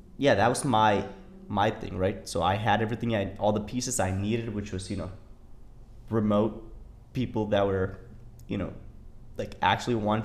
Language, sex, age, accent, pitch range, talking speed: English, male, 20-39, American, 95-115 Hz, 175 wpm